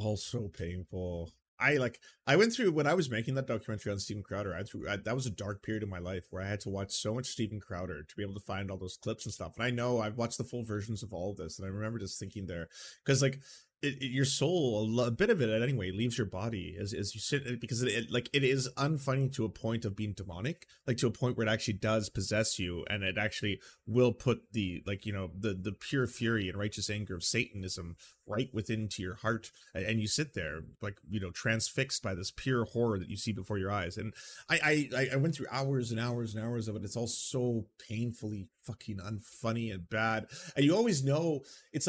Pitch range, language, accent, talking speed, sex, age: 105-135 Hz, English, American, 245 wpm, male, 30-49